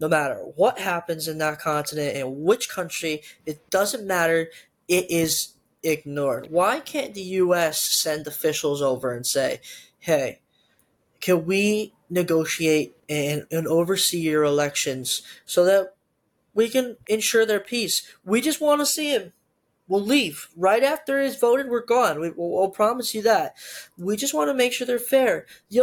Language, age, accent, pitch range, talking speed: English, 10-29, American, 155-225 Hz, 160 wpm